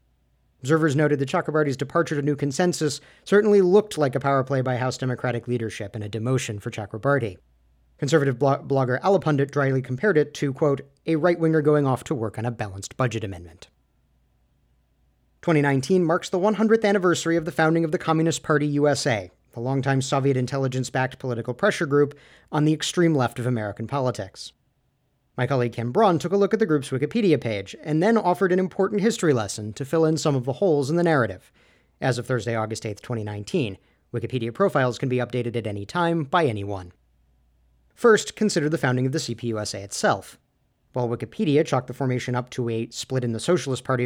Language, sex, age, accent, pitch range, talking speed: English, male, 40-59, American, 115-155 Hz, 185 wpm